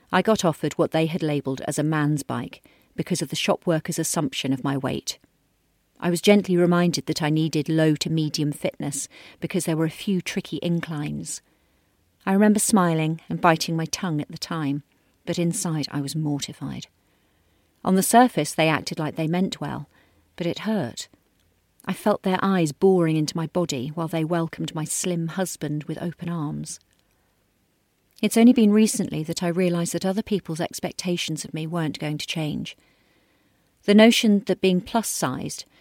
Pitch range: 155-185 Hz